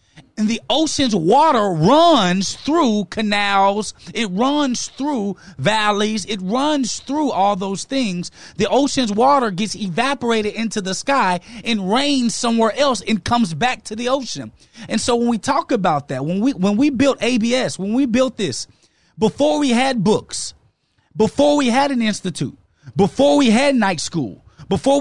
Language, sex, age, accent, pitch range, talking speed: English, male, 30-49, American, 195-265 Hz, 160 wpm